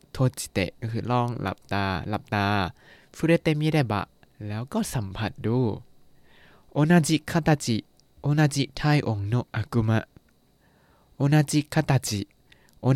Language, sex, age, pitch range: Thai, male, 20-39, 115-155 Hz